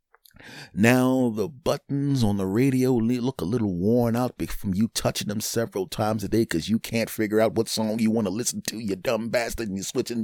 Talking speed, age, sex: 215 wpm, 30-49, male